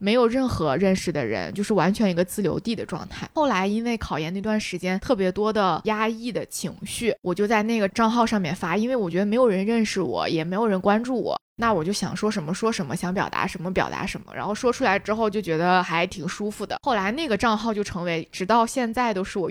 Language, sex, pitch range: Chinese, female, 180-225 Hz